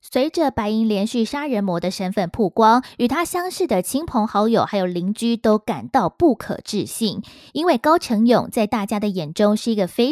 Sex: female